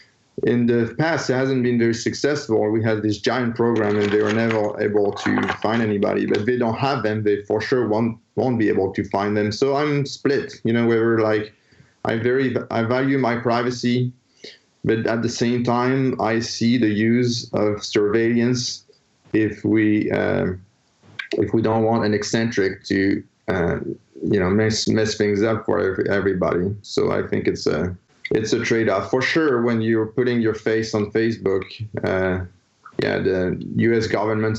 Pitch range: 100-115 Hz